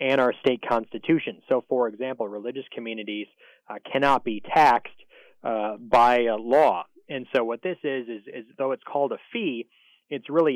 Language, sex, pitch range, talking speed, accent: English, male, 120-150 Hz, 175 wpm, American